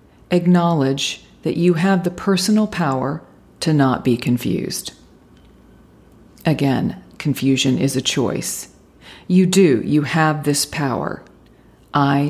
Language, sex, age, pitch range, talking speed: English, female, 40-59, 140-190 Hz, 110 wpm